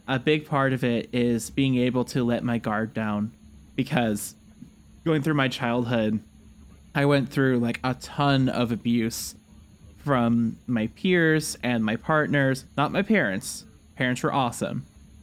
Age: 20-39